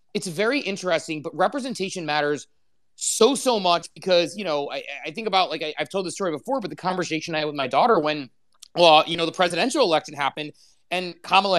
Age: 30-49